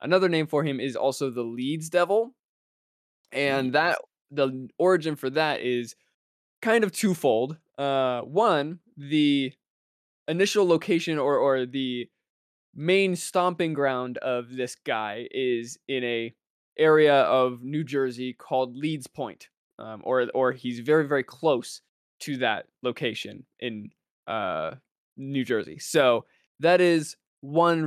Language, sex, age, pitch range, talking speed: English, male, 20-39, 125-155 Hz, 130 wpm